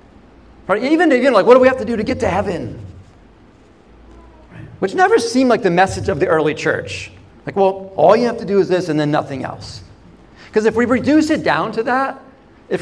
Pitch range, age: 155-215 Hz, 40-59